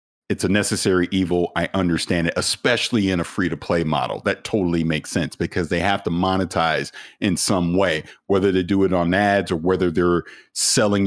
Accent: American